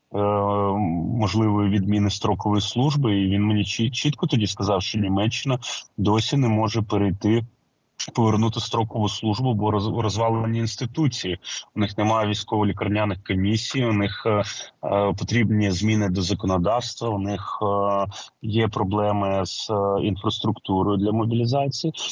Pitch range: 100-120 Hz